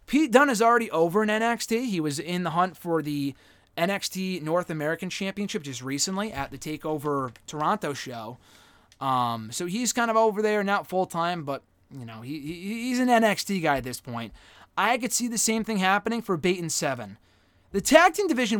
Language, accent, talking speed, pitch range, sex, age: English, American, 190 wpm, 135-205 Hz, male, 20-39